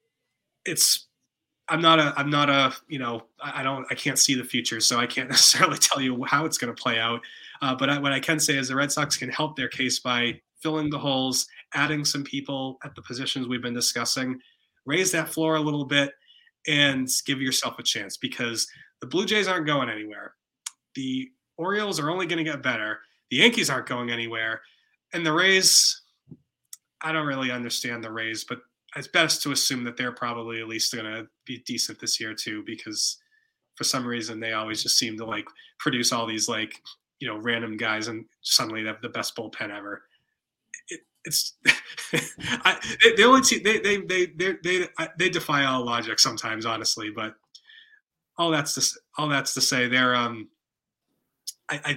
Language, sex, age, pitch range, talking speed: English, male, 20-39, 120-160 Hz, 195 wpm